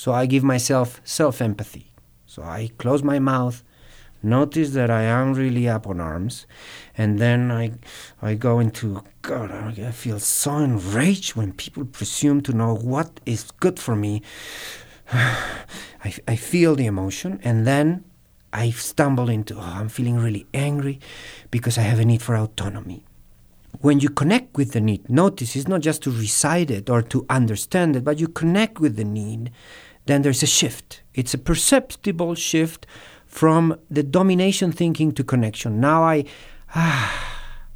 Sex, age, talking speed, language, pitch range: male, 50-69, 160 wpm, English, 115-155 Hz